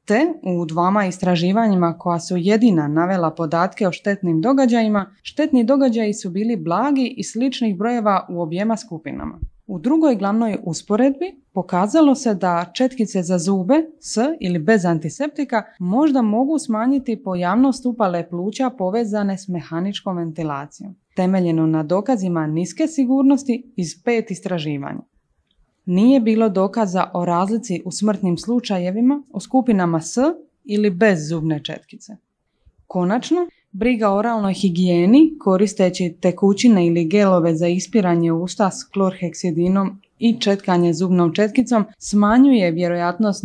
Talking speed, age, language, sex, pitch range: 125 wpm, 20-39, Croatian, female, 180-240 Hz